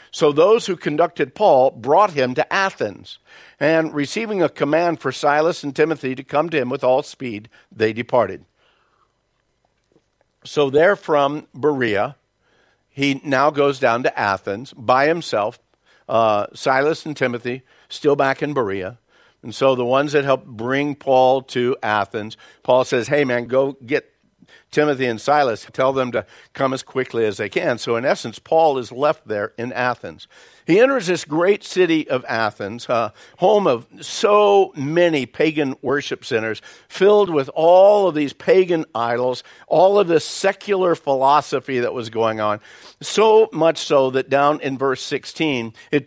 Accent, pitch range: American, 125-160 Hz